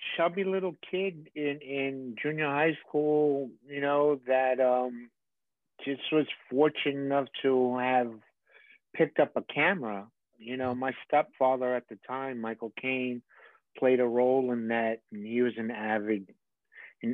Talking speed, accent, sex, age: 145 wpm, American, male, 50-69